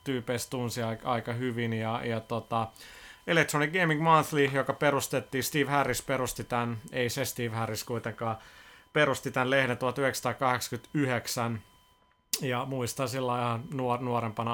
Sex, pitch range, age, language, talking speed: male, 115-130 Hz, 30-49, Finnish, 125 wpm